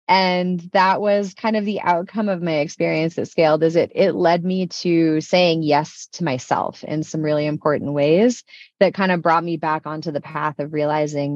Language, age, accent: English, 20-39, American